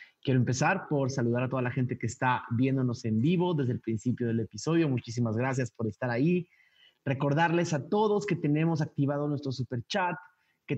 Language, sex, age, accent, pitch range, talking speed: Spanish, male, 30-49, Mexican, 125-155 Hz, 185 wpm